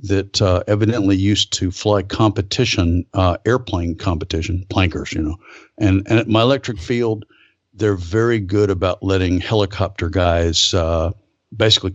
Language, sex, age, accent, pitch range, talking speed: English, male, 50-69, American, 90-105 Hz, 140 wpm